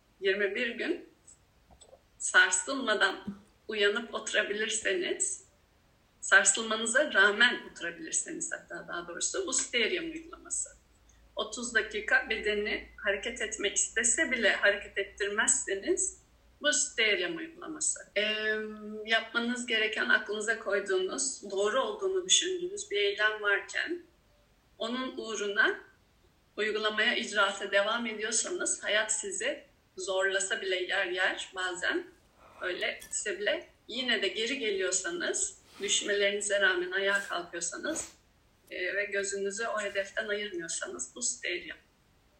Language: Turkish